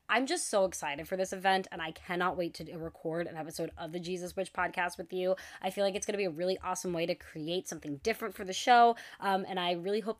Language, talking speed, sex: English, 265 wpm, female